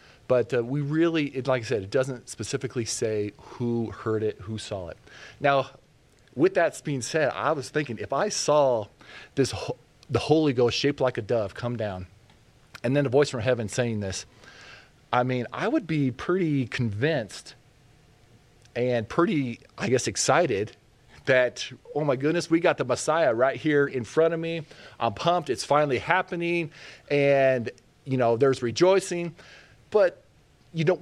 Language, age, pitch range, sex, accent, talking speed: English, 40-59, 115-145 Hz, male, American, 165 wpm